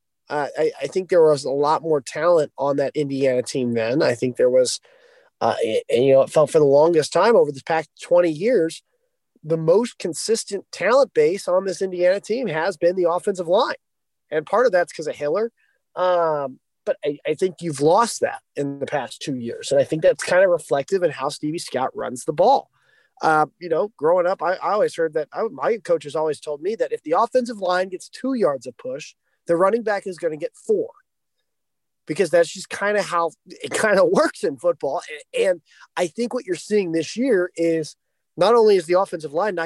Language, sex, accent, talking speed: English, male, American, 215 wpm